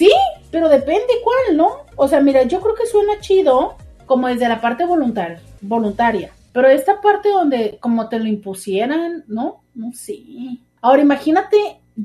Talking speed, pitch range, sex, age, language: 165 wpm, 205-290 Hz, female, 40-59, Spanish